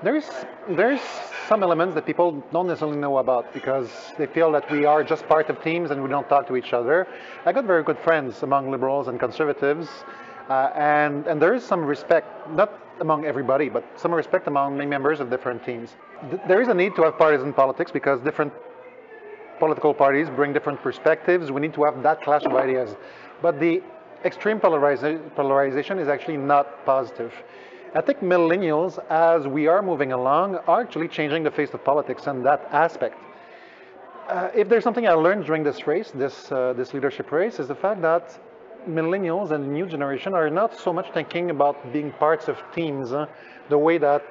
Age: 30-49